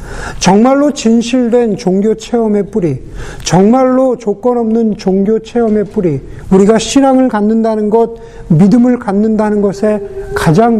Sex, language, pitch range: male, Korean, 165-220 Hz